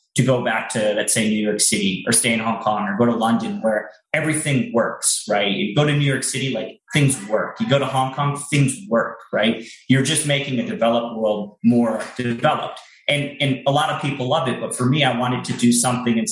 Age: 30-49